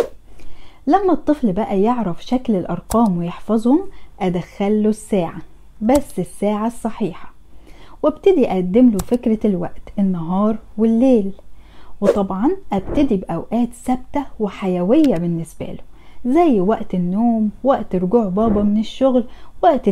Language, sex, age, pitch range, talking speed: Arabic, female, 10-29, 195-265 Hz, 105 wpm